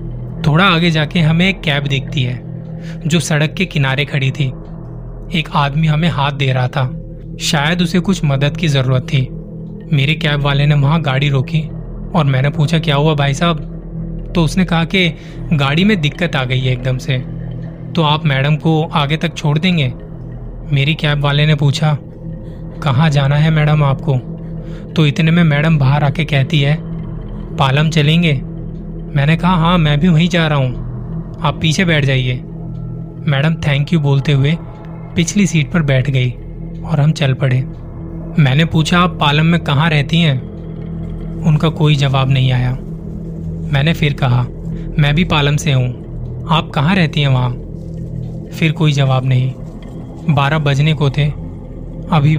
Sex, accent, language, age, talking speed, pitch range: male, native, Hindi, 20-39, 165 wpm, 140-165 Hz